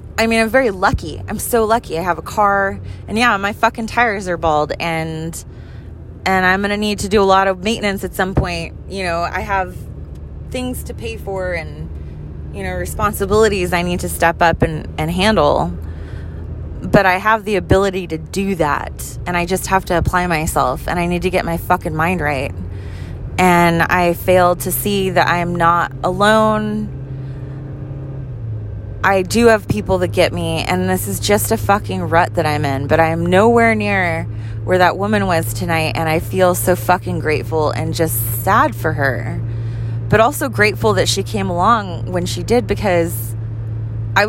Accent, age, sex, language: American, 20-39, female, English